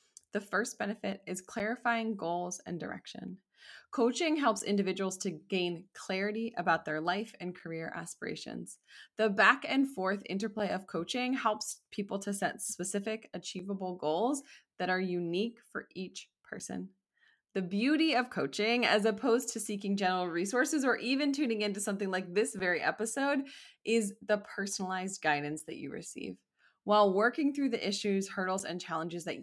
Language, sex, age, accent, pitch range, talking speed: English, female, 20-39, American, 185-235 Hz, 155 wpm